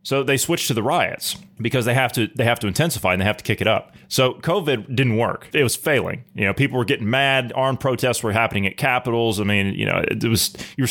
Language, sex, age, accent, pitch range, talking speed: English, male, 30-49, American, 110-145 Hz, 260 wpm